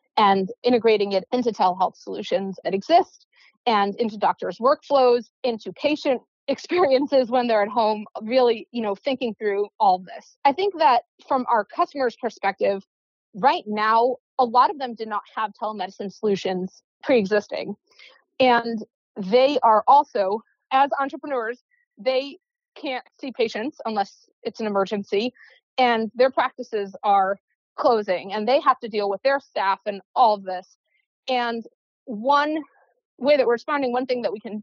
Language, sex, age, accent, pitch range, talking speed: English, female, 30-49, American, 220-280 Hz, 150 wpm